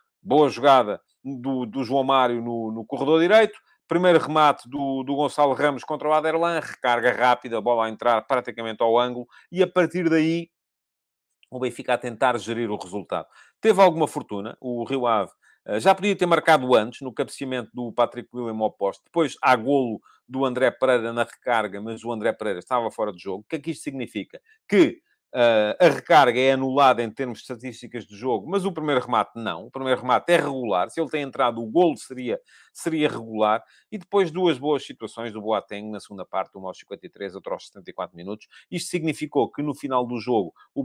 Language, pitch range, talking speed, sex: Portuguese, 115-155 Hz, 195 wpm, male